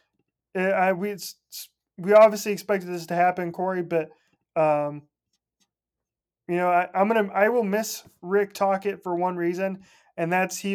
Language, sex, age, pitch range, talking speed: English, male, 20-39, 160-185 Hz, 160 wpm